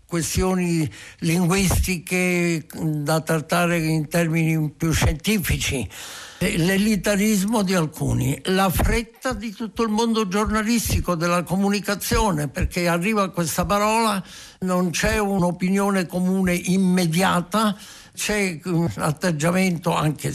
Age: 60-79